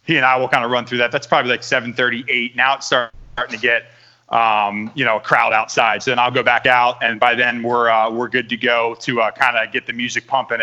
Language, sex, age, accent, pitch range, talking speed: English, male, 30-49, American, 120-140 Hz, 265 wpm